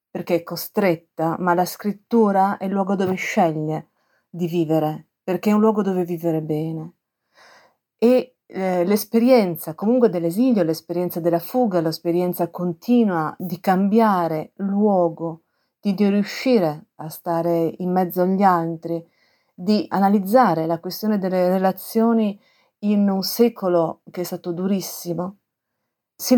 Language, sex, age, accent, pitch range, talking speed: Italian, female, 40-59, native, 170-210 Hz, 125 wpm